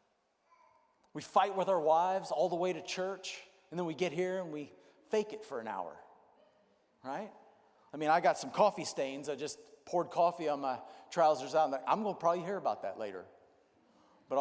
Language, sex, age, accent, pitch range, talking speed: English, male, 50-69, American, 145-185 Hz, 200 wpm